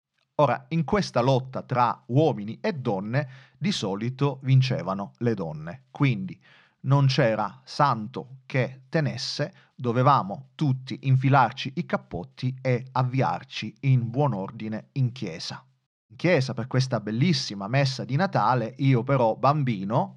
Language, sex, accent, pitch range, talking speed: Italian, male, native, 120-140 Hz, 125 wpm